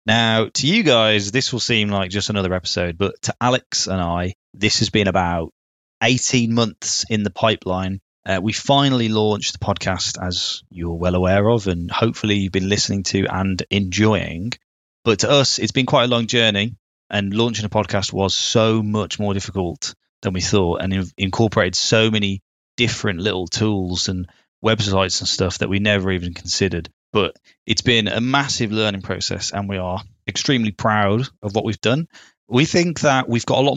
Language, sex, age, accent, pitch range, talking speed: English, male, 20-39, British, 95-115 Hz, 185 wpm